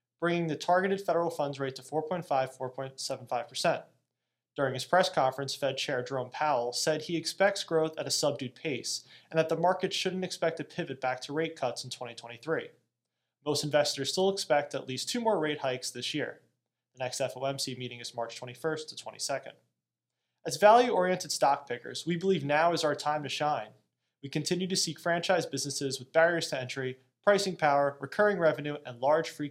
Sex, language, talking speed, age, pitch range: male, English, 180 wpm, 20-39, 130-165 Hz